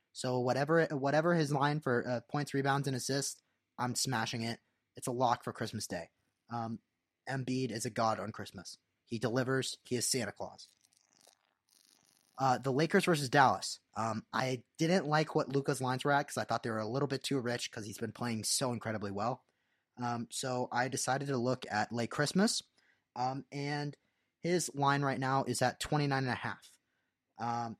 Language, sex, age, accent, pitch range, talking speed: English, male, 20-39, American, 115-140 Hz, 180 wpm